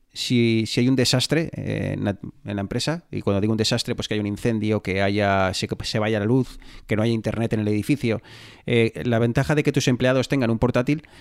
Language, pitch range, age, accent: Spanish, 110-145 Hz, 30-49, Spanish